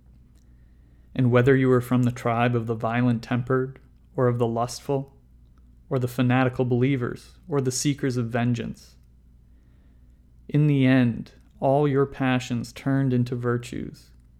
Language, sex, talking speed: English, male, 135 wpm